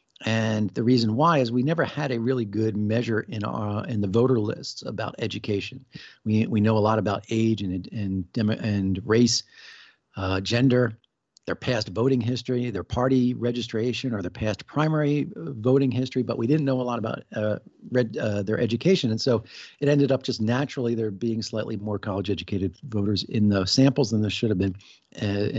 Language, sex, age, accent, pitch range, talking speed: English, male, 50-69, American, 105-125 Hz, 190 wpm